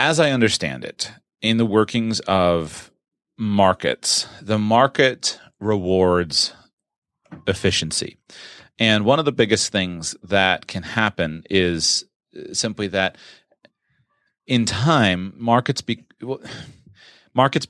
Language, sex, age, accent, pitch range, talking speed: English, male, 30-49, American, 90-110 Hz, 105 wpm